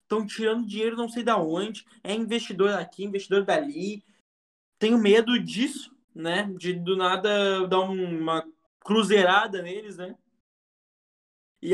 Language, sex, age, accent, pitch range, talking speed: Portuguese, male, 20-39, Brazilian, 180-225 Hz, 130 wpm